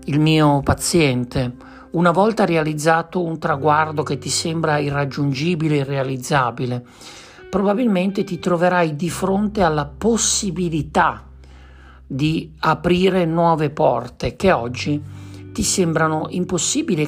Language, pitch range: Italian, 135-175 Hz